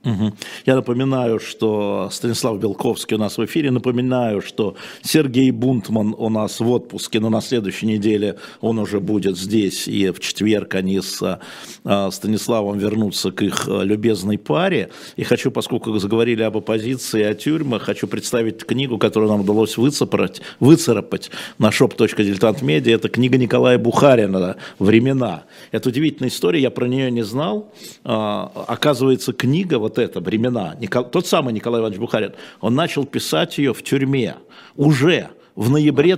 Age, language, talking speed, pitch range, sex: 50-69, Russian, 150 wpm, 110-135 Hz, male